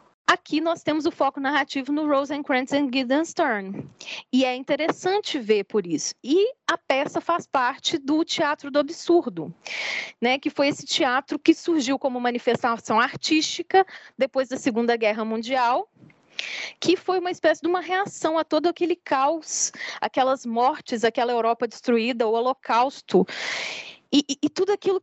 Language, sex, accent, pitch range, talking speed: Portuguese, female, Brazilian, 235-325 Hz, 155 wpm